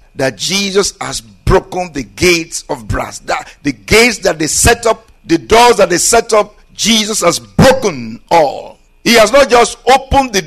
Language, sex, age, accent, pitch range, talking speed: English, male, 50-69, Nigerian, 155-205 Hz, 180 wpm